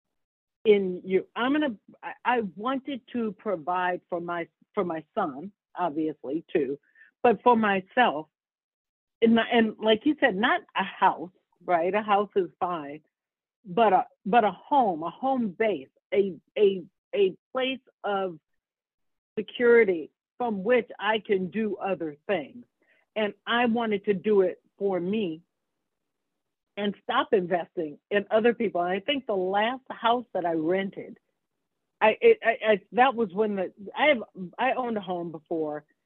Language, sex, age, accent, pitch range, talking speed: English, female, 60-79, American, 180-230 Hz, 150 wpm